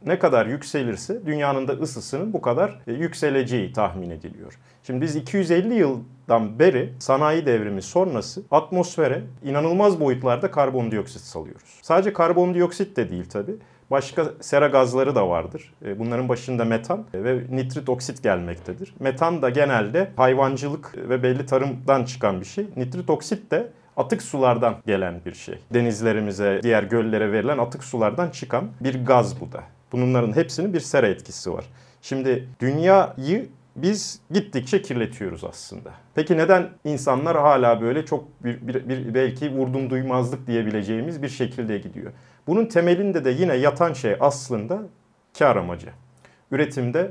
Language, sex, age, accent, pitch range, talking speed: Turkish, male, 40-59, native, 120-160 Hz, 140 wpm